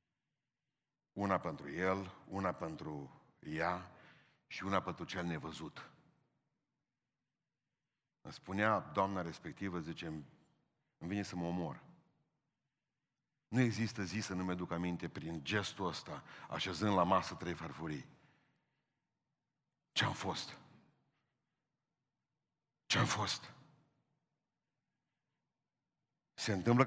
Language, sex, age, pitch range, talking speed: Romanian, male, 50-69, 95-135 Hz, 95 wpm